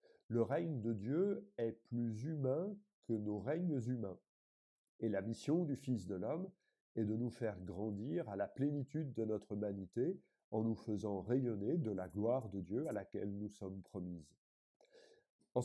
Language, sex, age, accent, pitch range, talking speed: French, male, 50-69, French, 105-140 Hz, 170 wpm